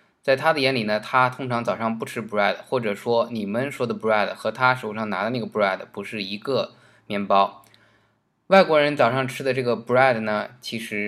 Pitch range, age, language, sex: 110-130 Hz, 20-39, Chinese, male